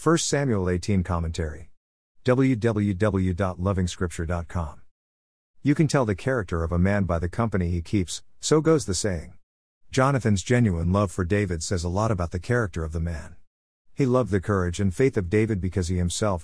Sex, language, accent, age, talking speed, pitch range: male, English, American, 50-69, 170 wpm, 85-115 Hz